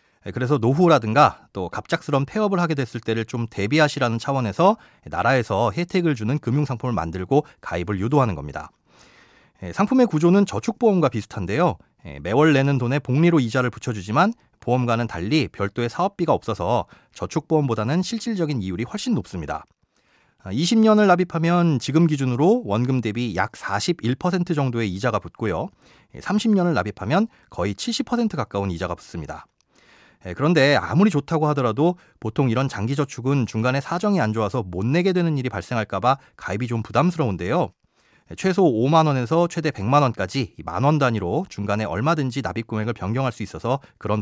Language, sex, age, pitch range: Korean, male, 30-49, 115-175 Hz